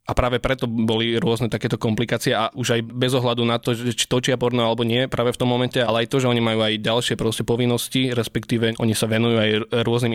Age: 20-39